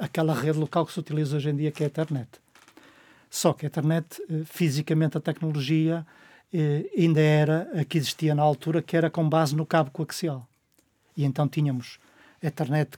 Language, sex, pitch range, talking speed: Portuguese, male, 150-185 Hz, 185 wpm